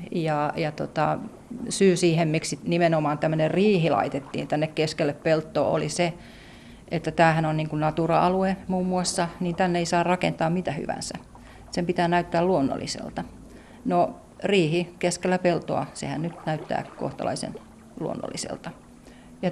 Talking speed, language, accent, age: 135 wpm, Finnish, native, 40-59